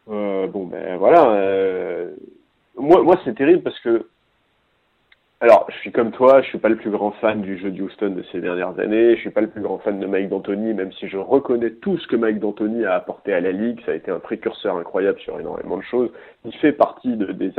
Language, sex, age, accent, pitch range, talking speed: French, male, 30-49, French, 105-170 Hz, 240 wpm